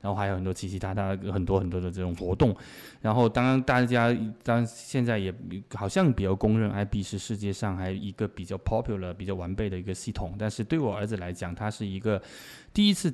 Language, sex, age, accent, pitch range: English, male, 20-39, Chinese, 95-115 Hz